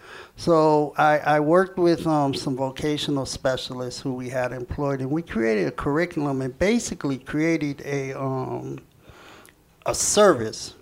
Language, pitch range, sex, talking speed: English, 135-165 Hz, male, 140 wpm